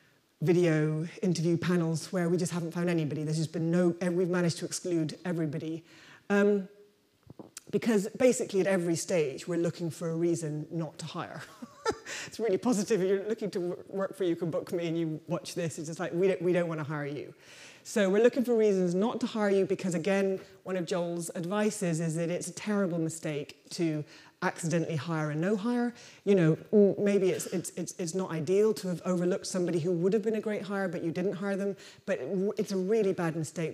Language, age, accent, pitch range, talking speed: English, 30-49, British, 165-205 Hz, 210 wpm